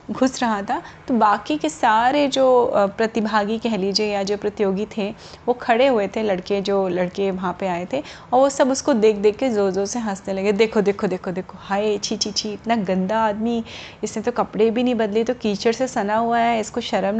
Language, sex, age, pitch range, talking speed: Hindi, female, 30-49, 200-245 Hz, 215 wpm